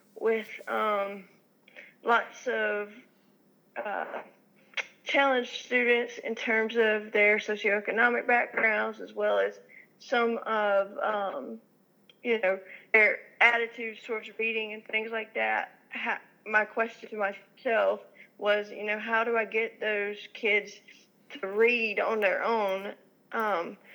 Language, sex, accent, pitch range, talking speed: English, female, American, 200-225 Hz, 120 wpm